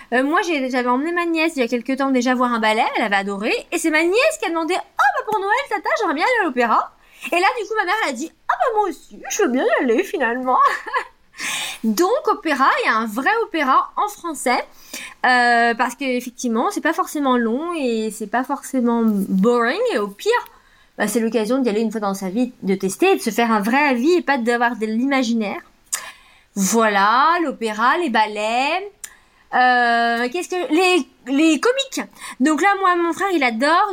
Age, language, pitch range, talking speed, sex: 20-39, French, 245-385 Hz, 220 wpm, female